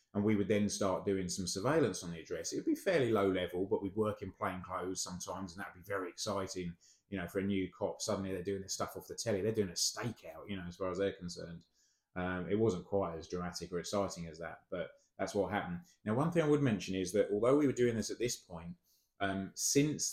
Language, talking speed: English, 255 wpm